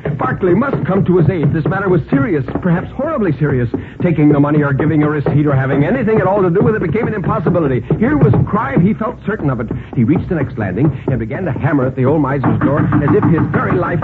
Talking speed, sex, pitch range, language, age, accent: 255 wpm, male, 125-165 Hz, English, 60-79, American